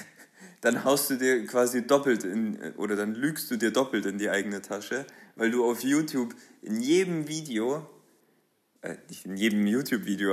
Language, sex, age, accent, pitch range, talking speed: German, male, 20-39, German, 110-135 Hz, 170 wpm